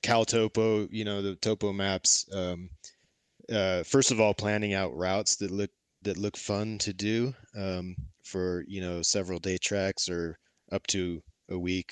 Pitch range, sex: 95-115 Hz, male